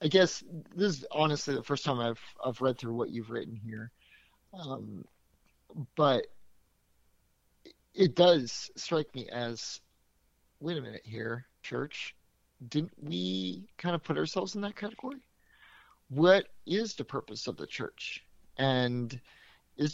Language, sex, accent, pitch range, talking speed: English, male, American, 115-150 Hz, 140 wpm